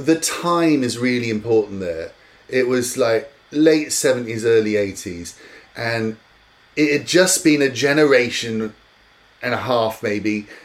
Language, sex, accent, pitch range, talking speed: English, male, British, 110-155 Hz, 135 wpm